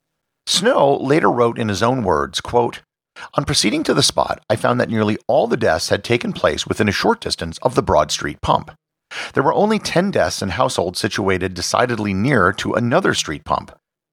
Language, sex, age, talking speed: English, male, 50-69, 190 wpm